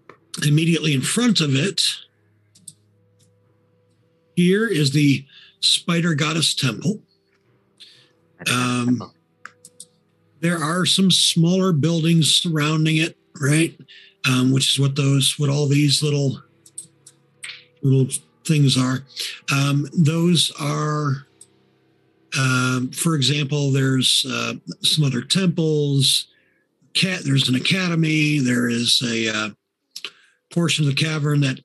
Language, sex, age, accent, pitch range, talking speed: English, male, 50-69, American, 130-170 Hz, 105 wpm